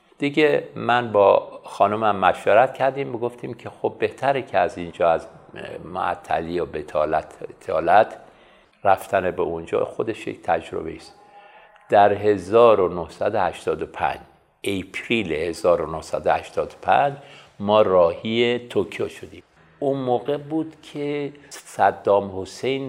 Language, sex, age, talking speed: Persian, male, 50-69, 105 wpm